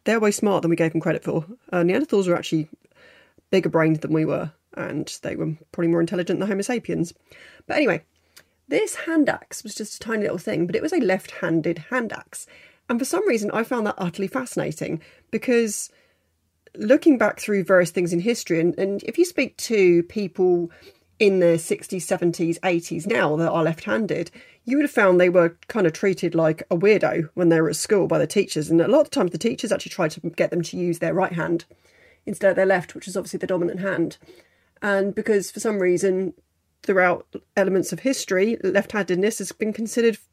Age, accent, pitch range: 30-49, British, 170-220 Hz